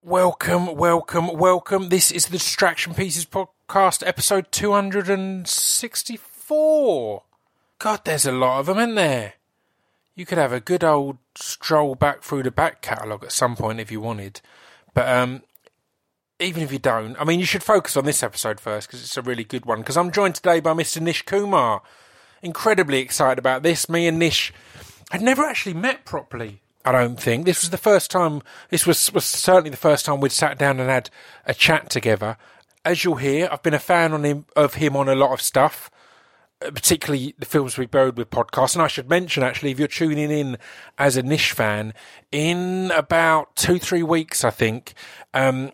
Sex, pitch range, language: male, 130-180 Hz, English